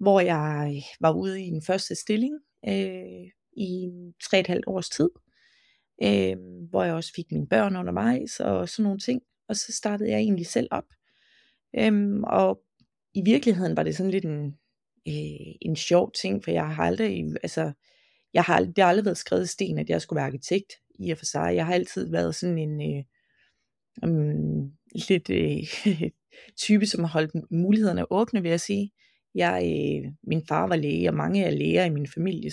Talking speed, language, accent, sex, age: 190 wpm, Danish, native, female, 30-49